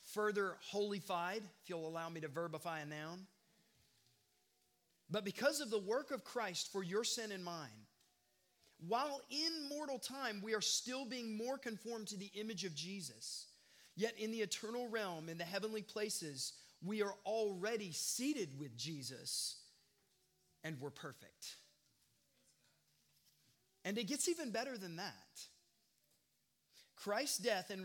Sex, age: male, 30-49